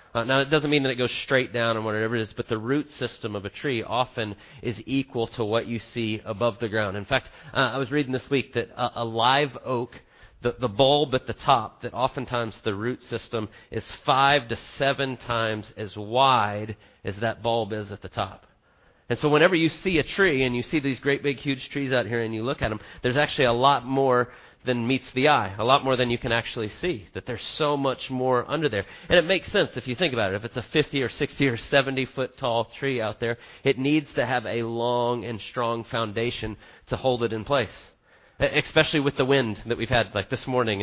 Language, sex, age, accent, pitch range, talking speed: English, male, 30-49, American, 115-135 Hz, 235 wpm